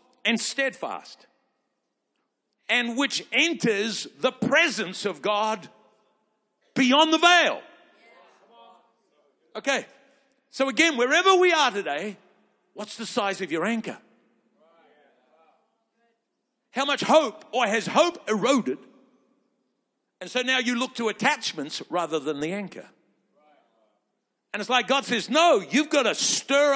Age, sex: 60-79, male